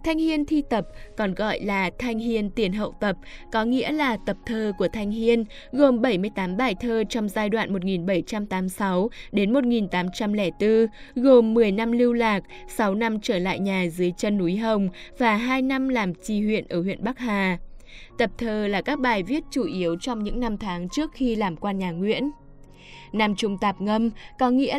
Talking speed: 185 wpm